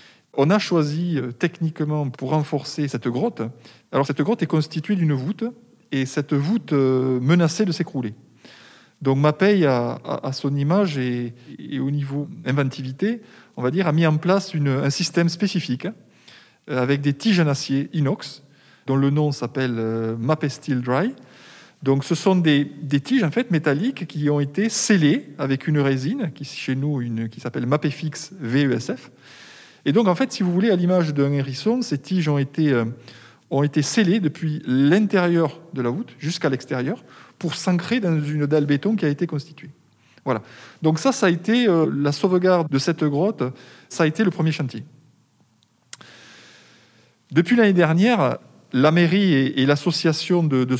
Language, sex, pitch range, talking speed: French, male, 135-175 Hz, 170 wpm